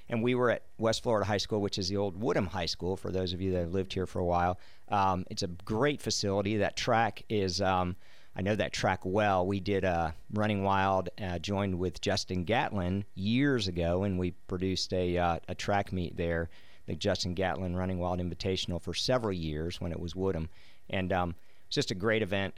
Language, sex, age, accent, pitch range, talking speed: English, male, 50-69, American, 90-105 Hz, 215 wpm